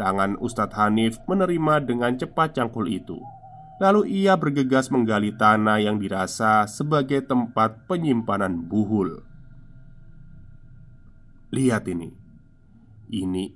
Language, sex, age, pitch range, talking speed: Indonesian, male, 20-39, 105-140 Hz, 95 wpm